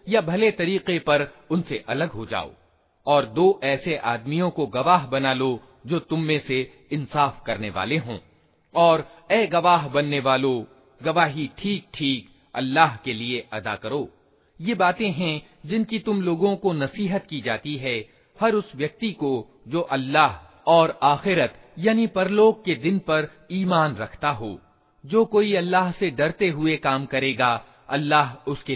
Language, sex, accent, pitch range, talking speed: Hindi, male, native, 135-180 Hz, 155 wpm